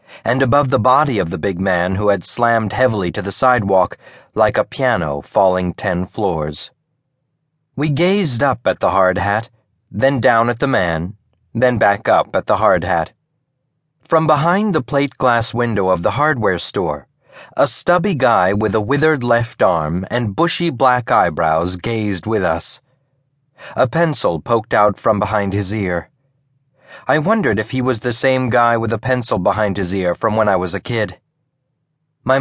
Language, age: English, 40-59